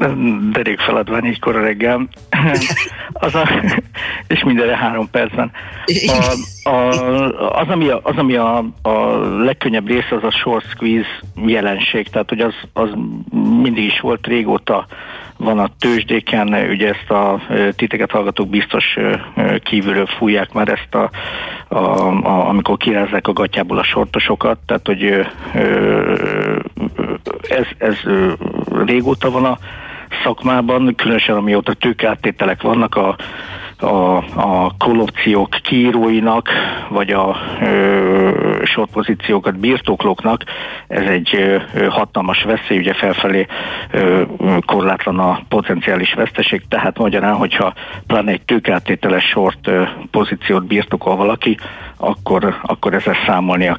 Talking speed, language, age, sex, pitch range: 115 wpm, Hungarian, 60-79, male, 100-120 Hz